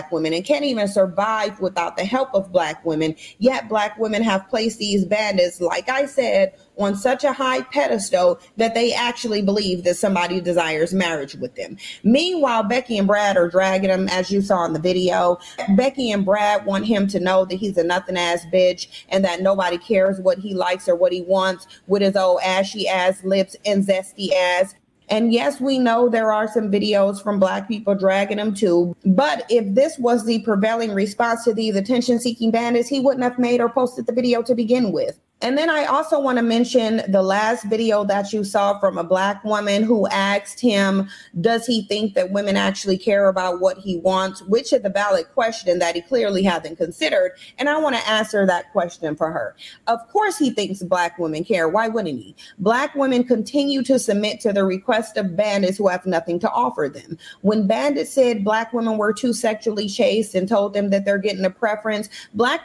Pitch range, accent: 190-235 Hz, American